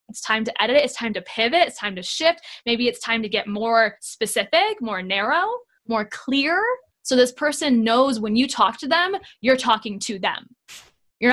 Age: 10-29